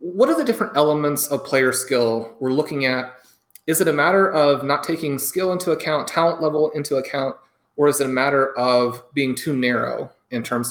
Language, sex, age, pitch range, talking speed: English, male, 30-49, 120-150 Hz, 200 wpm